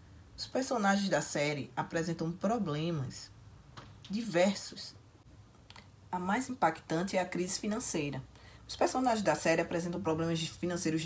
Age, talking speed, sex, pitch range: 20-39, 115 wpm, female, 145-210 Hz